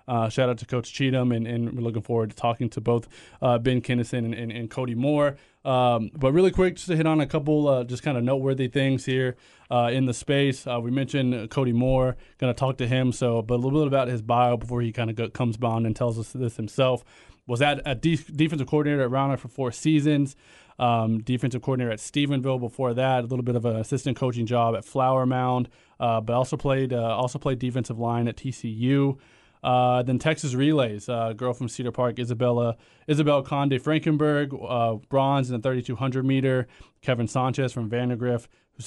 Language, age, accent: English, 20-39, American